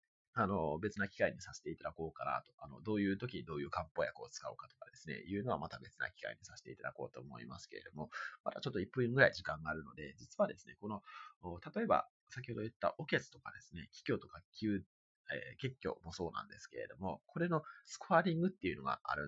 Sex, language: male, Japanese